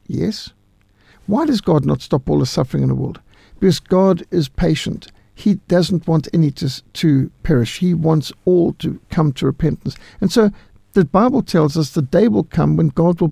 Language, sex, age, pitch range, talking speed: English, male, 60-79, 145-195 Hz, 195 wpm